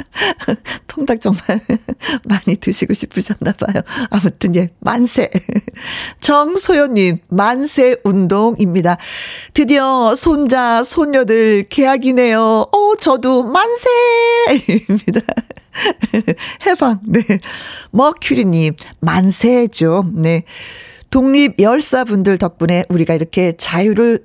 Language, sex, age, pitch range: Korean, female, 50-69, 185-270 Hz